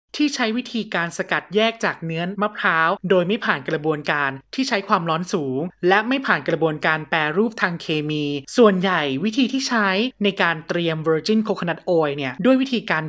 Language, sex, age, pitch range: Thai, male, 20-39, 160-220 Hz